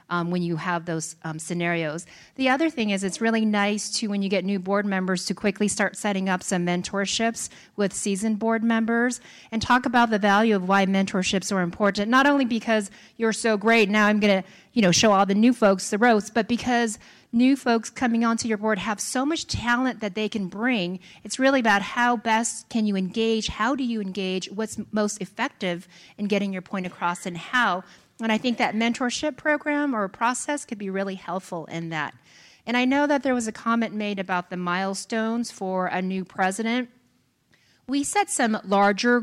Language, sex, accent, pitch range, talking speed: English, female, American, 190-235 Hz, 205 wpm